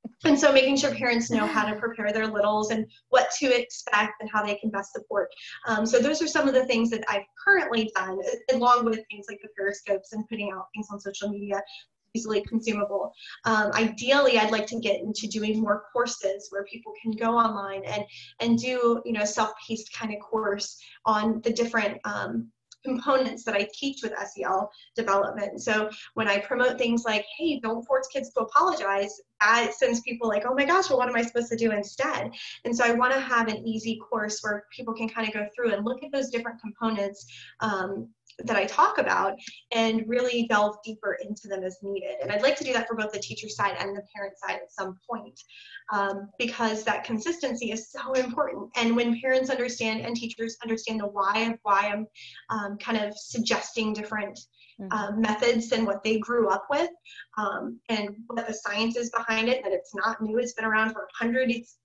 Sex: female